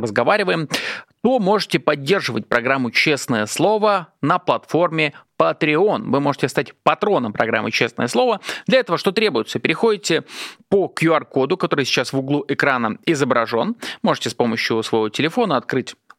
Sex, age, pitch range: male, 30-49, 135-195 Hz